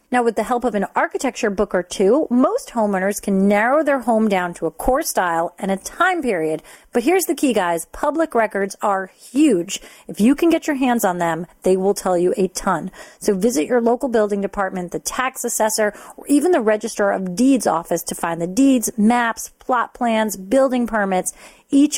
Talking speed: 200 wpm